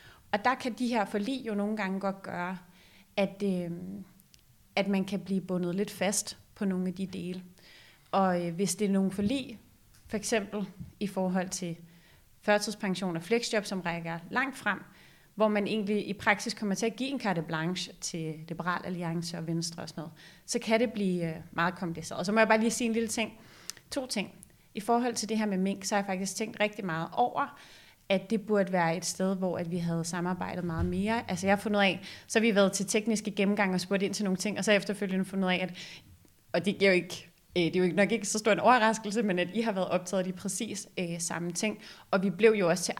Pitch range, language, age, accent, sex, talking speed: 175-210 Hz, Danish, 30-49, native, female, 225 wpm